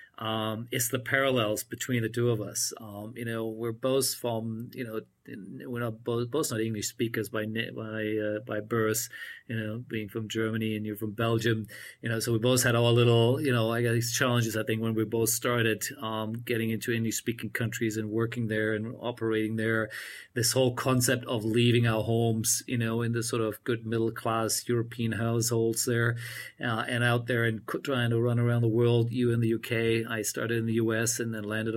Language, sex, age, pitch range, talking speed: English, male, 40-59, 110-125 Hz, 210 wpm